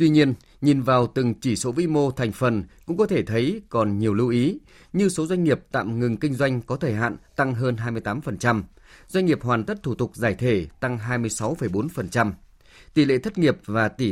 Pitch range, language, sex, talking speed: 110-150 Hz, Vietnamese, male, 210 wpm